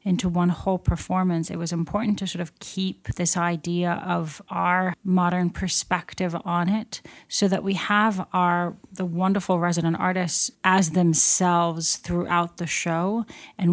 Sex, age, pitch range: female, 30-49, 170-195 Hz